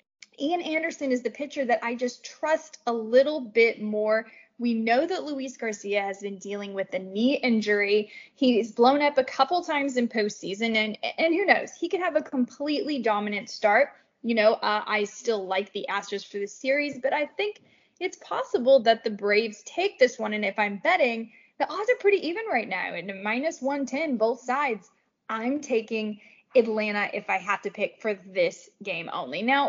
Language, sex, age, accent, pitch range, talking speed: English, female, 10-29, American, 210-285 Hz, 190 wpm